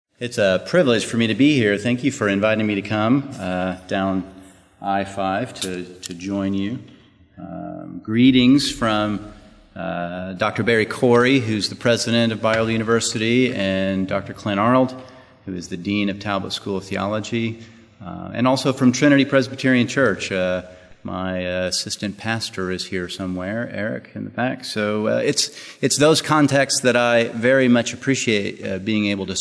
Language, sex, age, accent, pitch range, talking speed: English, male, 30-49, American, 95-115 Hz, 165 wpm